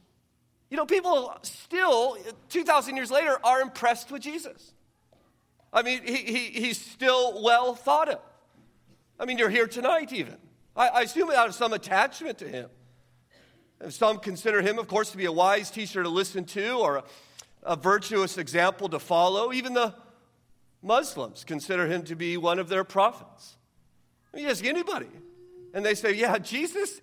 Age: 40-59